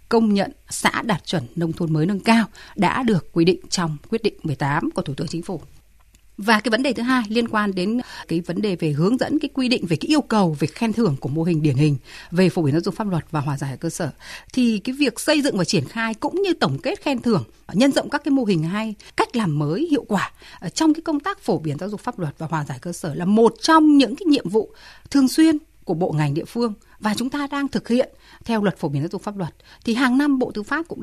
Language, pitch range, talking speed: Vietnamese, 170-255 Hz, 275 wpm